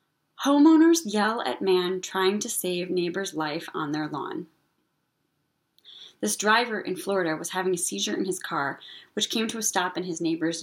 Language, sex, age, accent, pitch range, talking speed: English, female, 20-39, American, 190-275 Hz, 175 wpm